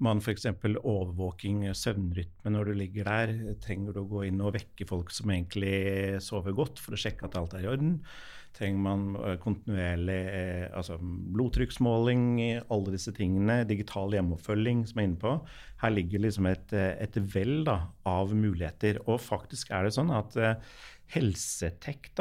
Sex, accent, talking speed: male, Swedish, 160 wpm